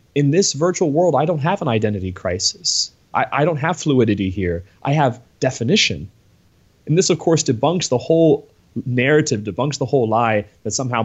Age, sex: 20-39, male